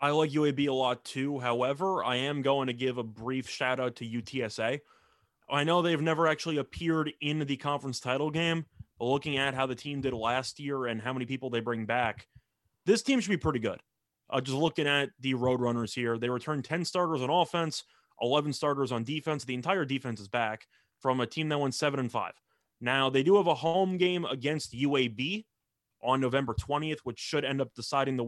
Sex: male